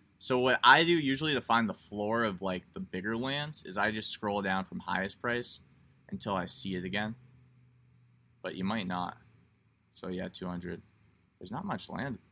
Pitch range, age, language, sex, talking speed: 90-120 Hz, 20-39, English, male, 185 wpm